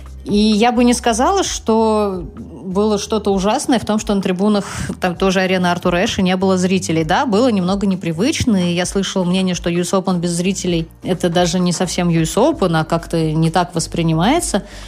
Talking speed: 175 wpm